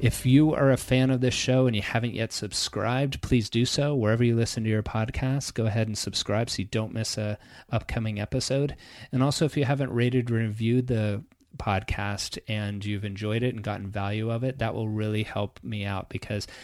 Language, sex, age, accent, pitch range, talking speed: English, male, 30-49, American, 105-125 Hz, 215 wpm